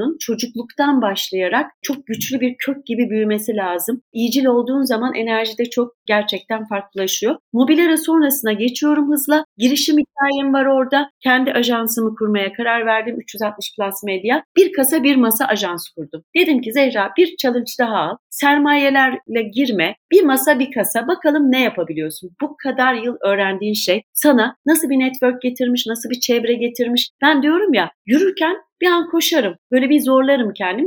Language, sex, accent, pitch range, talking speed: Turkish, female, native, 210-295 Hz, 155 wpm